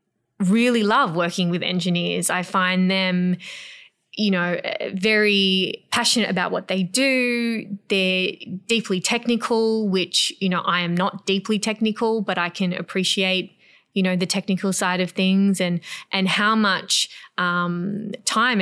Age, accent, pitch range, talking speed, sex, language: 20-39, Australian, 180-210 Hz, 140 wpm, female, English